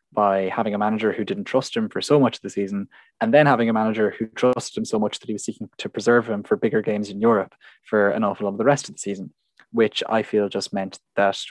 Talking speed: 270 wpm